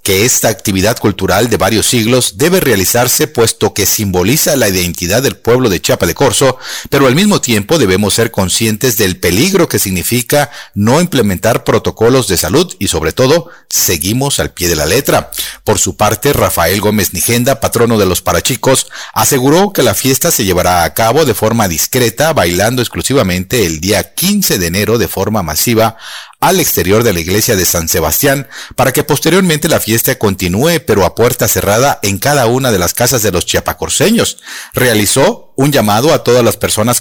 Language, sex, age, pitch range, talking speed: Spanish, male, 40-59, 95-135 Hz, 180 wpm